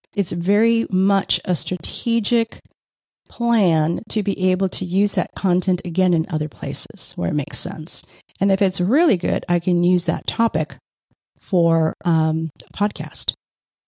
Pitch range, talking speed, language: 165-195 Hz, 145 wpm, English